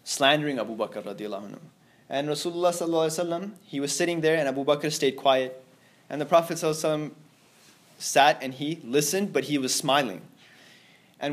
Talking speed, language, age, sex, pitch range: 140 wpm, English, 20-39, male, 135-165 Hz